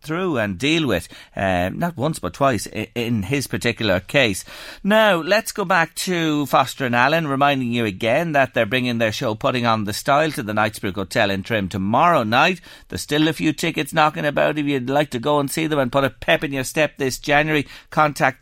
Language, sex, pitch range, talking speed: English, male, 110-150 Hz, 220 wpm